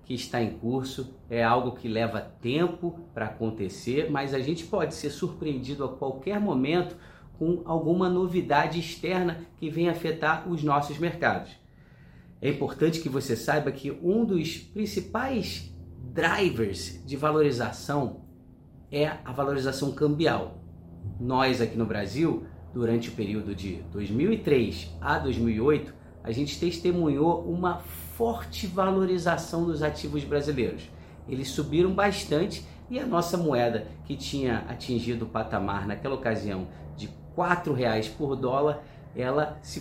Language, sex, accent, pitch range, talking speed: Portuguese, male, Brazilian, 115-160 Hz, 130 wpm